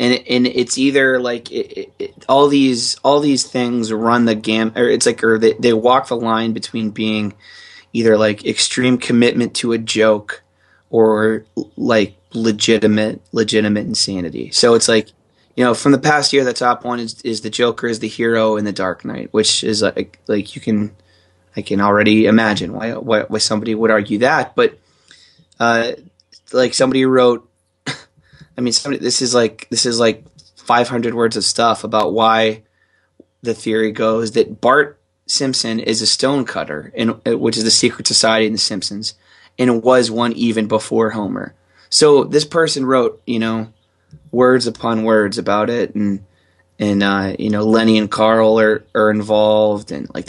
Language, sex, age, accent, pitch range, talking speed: English, male, 20-39, American, 105-120 Hz, 180 wpm